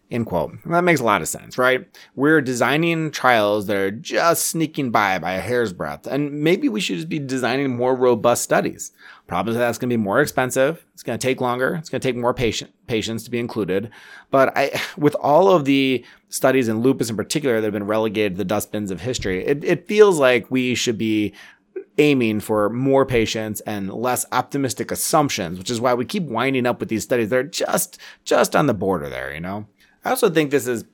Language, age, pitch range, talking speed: English, 30-49, 110-135 Hz, 220 wpm